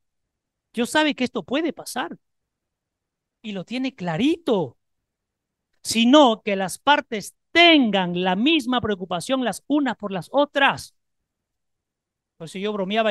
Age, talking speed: 40-59, 125 wpm